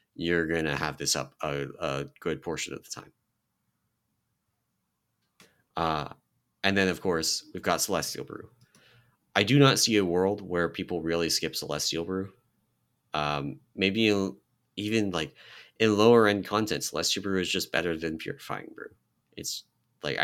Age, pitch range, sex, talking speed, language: 30-49, 80-105 Hz, male, 150 wpm, English